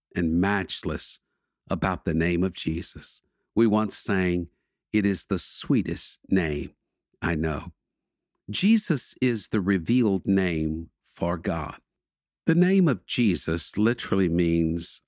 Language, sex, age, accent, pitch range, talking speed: English, male, 50-69, American, 85-115 Hz, 120 wpm